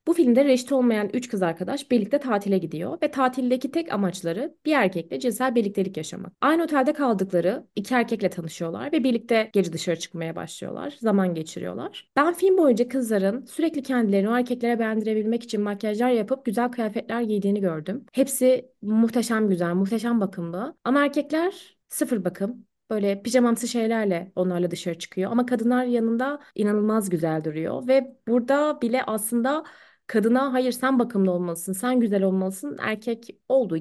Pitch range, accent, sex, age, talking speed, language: 195-250 Hz, native, female, 30-49, 145 wpm, Turkish